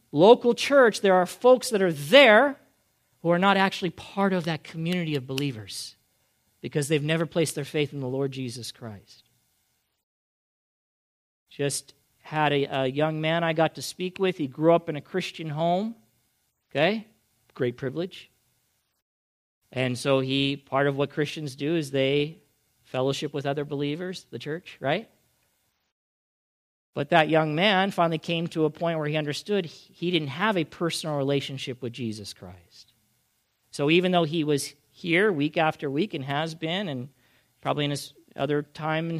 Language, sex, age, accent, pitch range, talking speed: English, male, 50-69, American, 135-180 Hz, 165 wpm